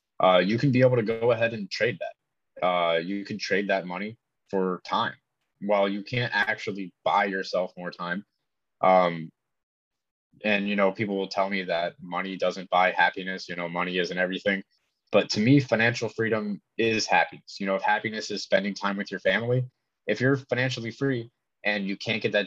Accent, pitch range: American, 95-115 Hz